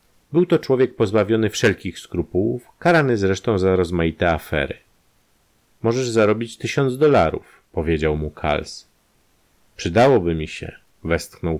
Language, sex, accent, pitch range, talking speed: Polish, male, native, 95-125 Hz, 115 wpm